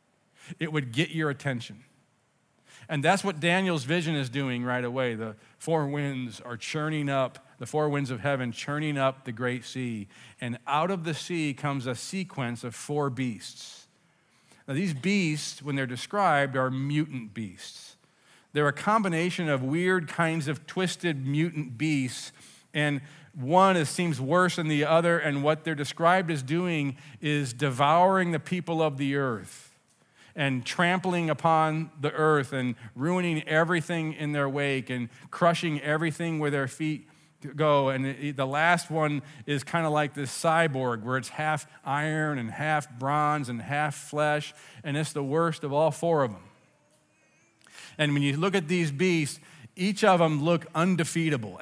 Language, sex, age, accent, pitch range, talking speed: English, male, 40-59, American, 135-165 Hz, 165 wpm